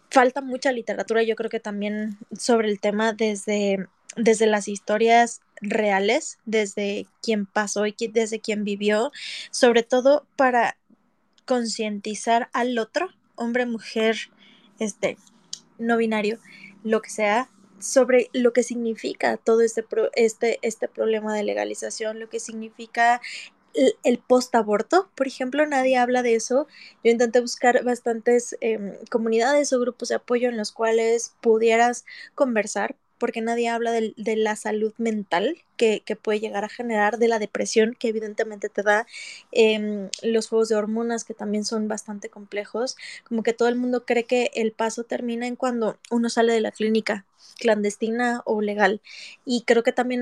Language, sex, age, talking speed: Spanish, female, 10-29, 155 wpm